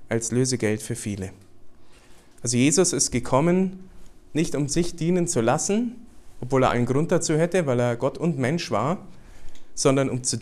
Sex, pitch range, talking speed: male, 120-160 Hz, 165 wpm